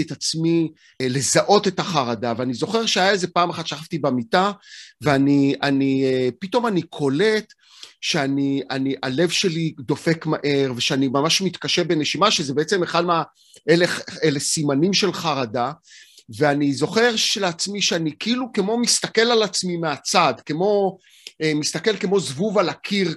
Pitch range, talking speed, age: 145-200 Hz, 130 wpm, 40-59